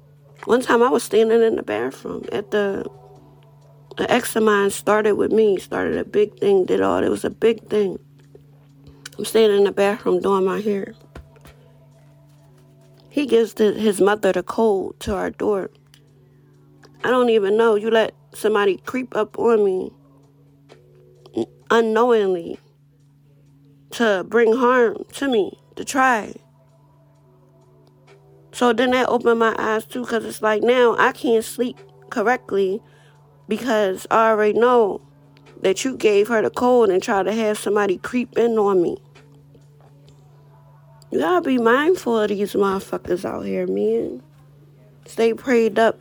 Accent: American